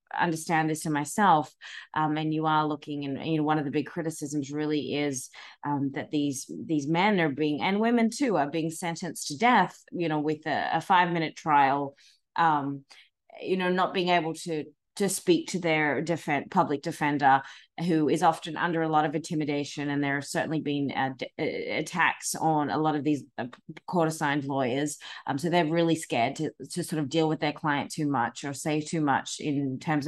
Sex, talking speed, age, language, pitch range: female, 200 wpm, 30-49, English, 145-165 Hz